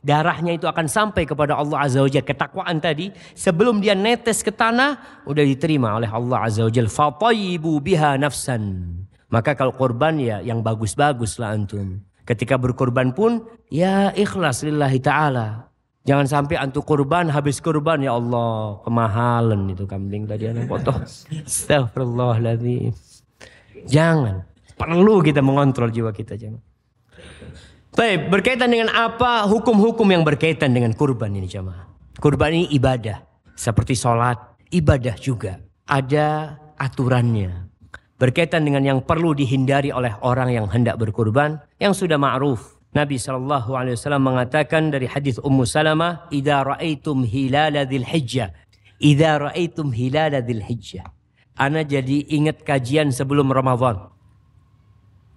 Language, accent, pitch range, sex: Indonesian, native, 115-155 Hz, male